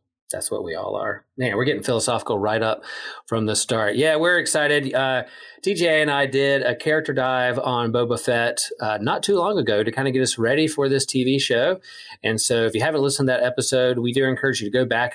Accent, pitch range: American, 110-130 Hz